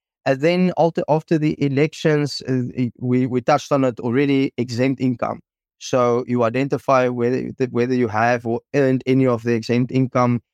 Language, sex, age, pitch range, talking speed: English, male, 20-39, 110-130 Hz, 155 wpm